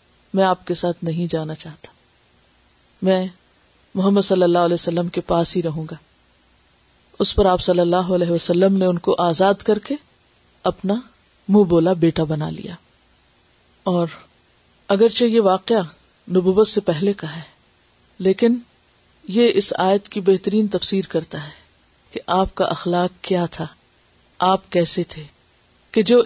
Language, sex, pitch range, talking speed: Urdu, female, 165-215 Hz, 150 wpm